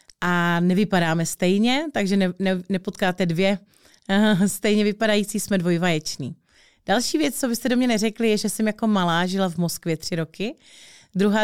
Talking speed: 145 wpm